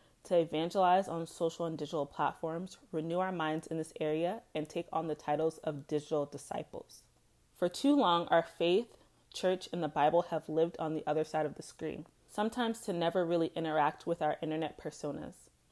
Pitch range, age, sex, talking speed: 160-195 Hz, 30-49, female, 185 wpm